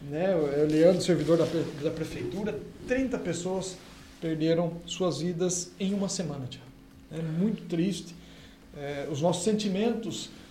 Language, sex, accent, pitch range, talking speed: Portuguese, male, Brazilian, 160-220 Hz, 130 wpm